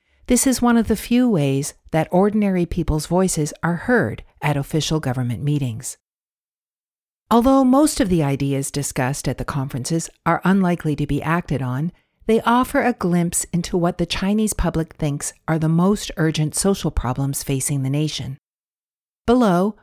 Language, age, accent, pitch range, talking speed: English, 50-69, American, 145-200 Hz, 155 wpm